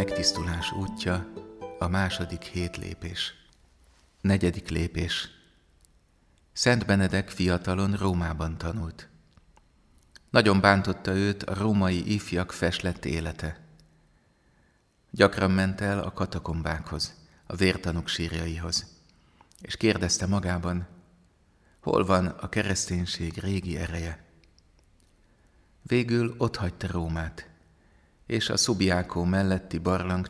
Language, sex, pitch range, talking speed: Hungarian, male, 85-95 Hz, 90 wpm